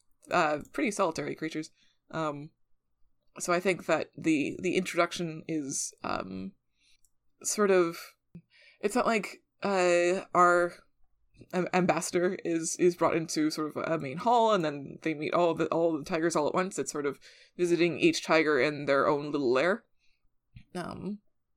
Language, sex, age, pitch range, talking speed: English, female, 20-39, 160-195 Hz, 155 wpm